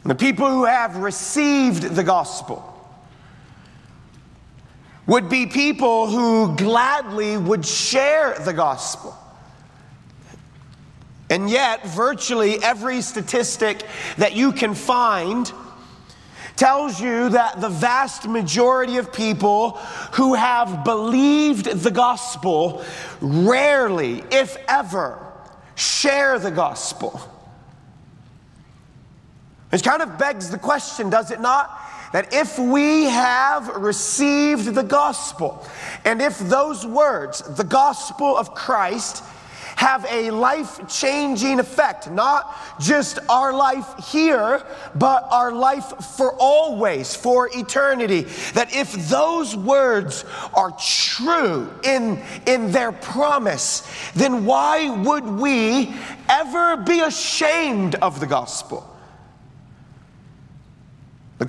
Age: 40-59